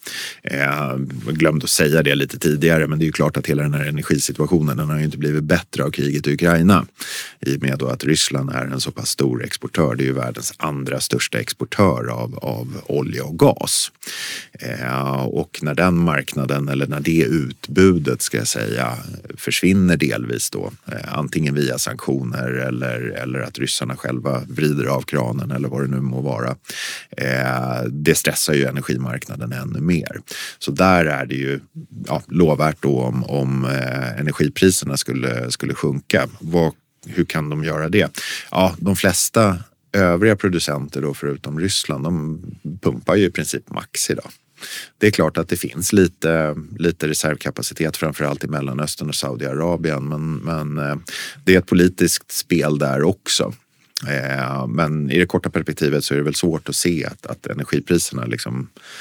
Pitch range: 65-80 Hz